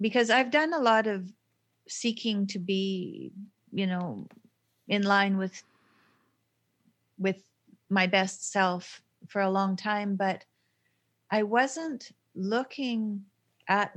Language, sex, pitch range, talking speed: English, female, 185-210 Hz, 115 wpm